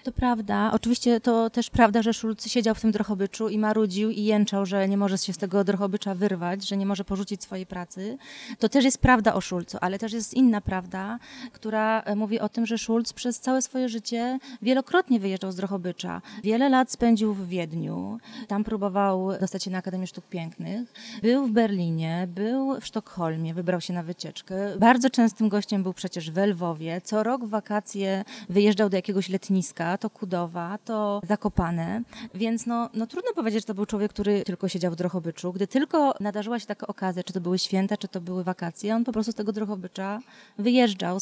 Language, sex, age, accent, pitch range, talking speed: Polish, female, 20-39, native, 190-225 Hz, 190 wpm